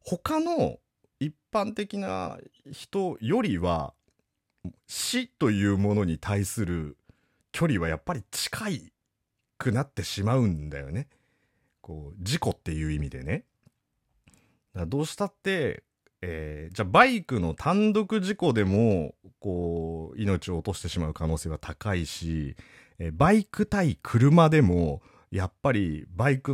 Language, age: Japanese, 40-59